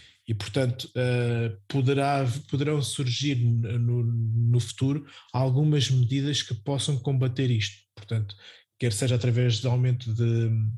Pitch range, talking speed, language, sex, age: 120-145 Hz, 115 wpm, Portuguese, male, 20-39